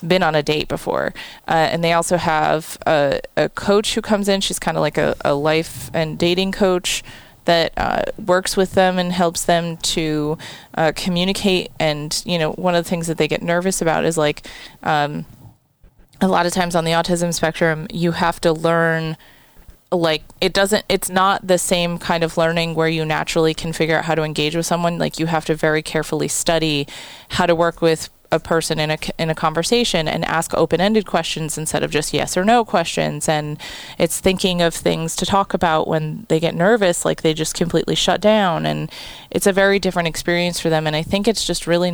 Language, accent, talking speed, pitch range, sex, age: English, American, 210 wpm, 160-180 Hz, female, 20-39